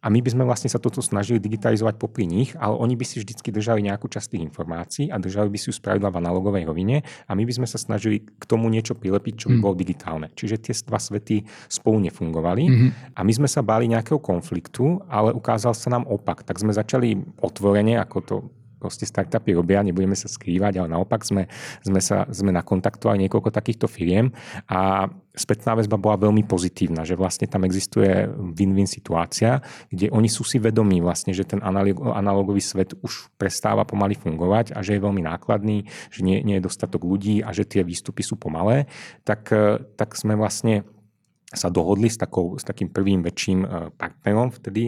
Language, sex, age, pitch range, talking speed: Czech, male, 30-49, 95-115 Hz, 185 wpm